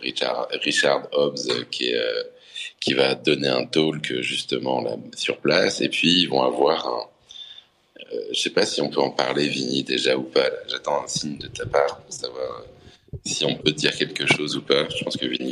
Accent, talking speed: French, 200 wpm